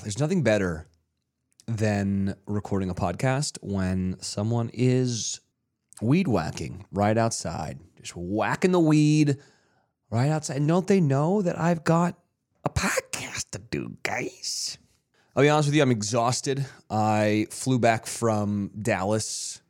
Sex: male